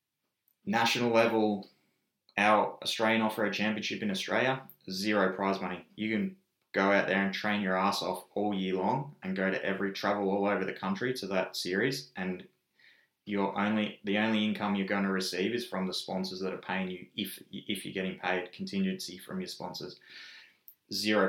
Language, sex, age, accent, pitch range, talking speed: English, male, 20-39, Australian, 95-110 Hz, 180 wpm